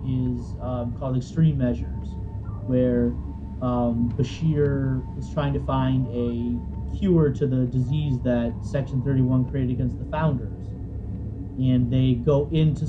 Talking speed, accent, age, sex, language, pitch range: 130 wpm, American, 30-49, male, English, 105-150 Hz